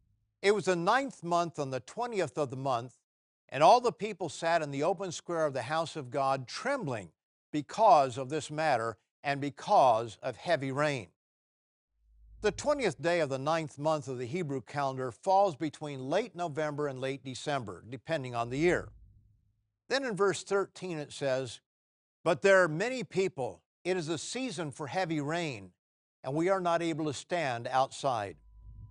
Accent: American